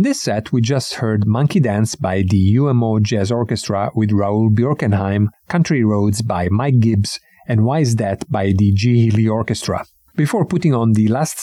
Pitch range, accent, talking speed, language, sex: 105-140 Hz, Italian, 185 wpm, English, male